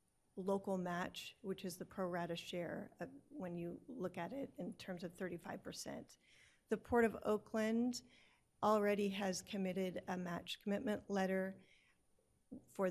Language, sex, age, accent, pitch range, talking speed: English, female, 40-59, American, 185-210 Hz, 135 wpm